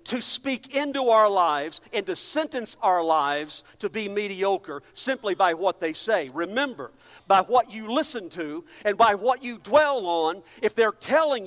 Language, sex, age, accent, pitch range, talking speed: English, male, 50-69, American, 180-255 Hz, 175 wpm